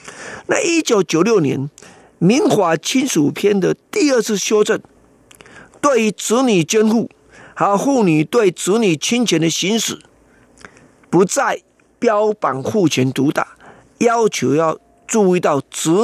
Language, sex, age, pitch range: Chinese, male, 50-69, 155-230 Hz